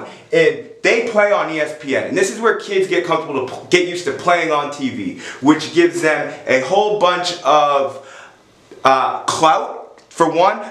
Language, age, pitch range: English, 30-49, 135-185 Hz